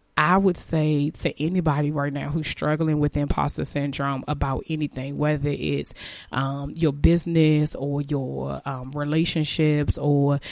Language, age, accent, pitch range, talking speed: English, 20-39, American, 140-165 Hz, 135 wpm